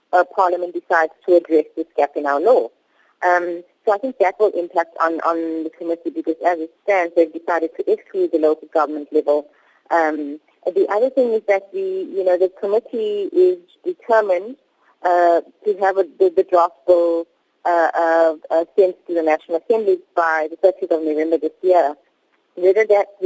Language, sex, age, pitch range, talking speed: English, female, 30-49, 165-205 Hz, 170 wpm